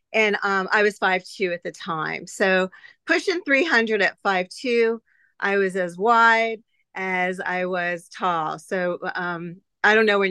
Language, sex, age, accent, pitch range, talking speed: English, female, 40-59, American, 185-235 Hz, 155 wpm